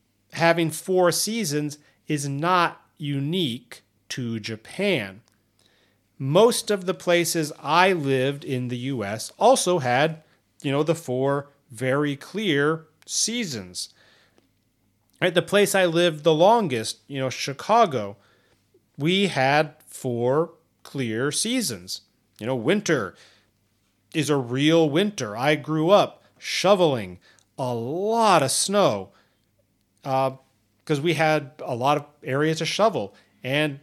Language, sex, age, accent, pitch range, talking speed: English, male, 40-59, American, 120-175 Hz, 115 wpm